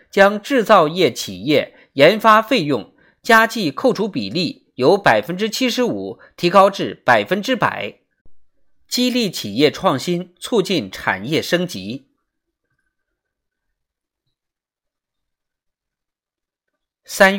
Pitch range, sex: 170-240 Hz, male